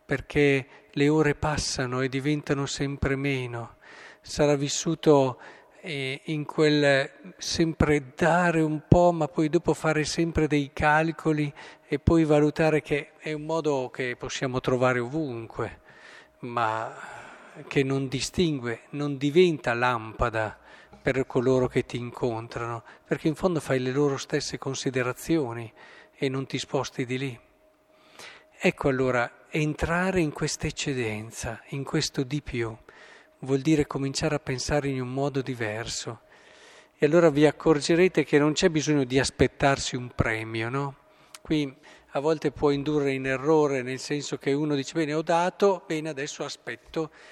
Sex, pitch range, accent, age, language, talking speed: male, 130-155 Hz, native, 40-59, Italian, 140 wpm